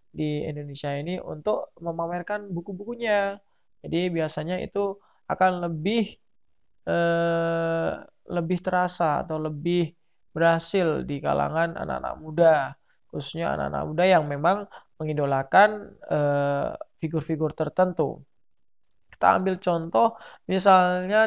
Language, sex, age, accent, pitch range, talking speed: Indonesian, male, 20-39, native, 155-185 Hz, 95 wpm